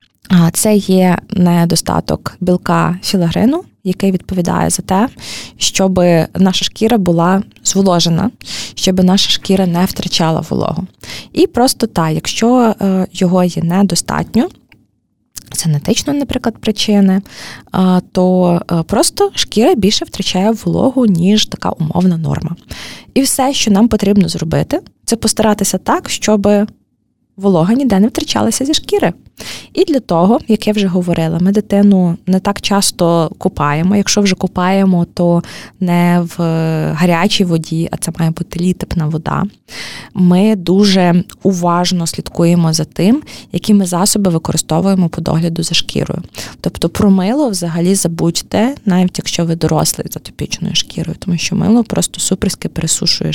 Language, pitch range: Ukrainian, 170-205 Hz